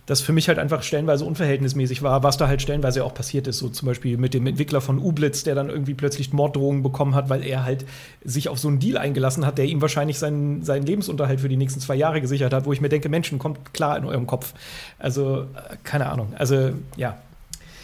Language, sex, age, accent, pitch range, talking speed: German, male, 30-49, German, 135-155 Hz, 230 wpm